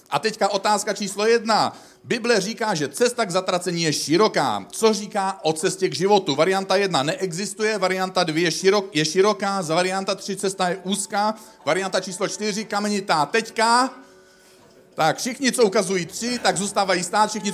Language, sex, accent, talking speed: Czech, male, native, 160 wpm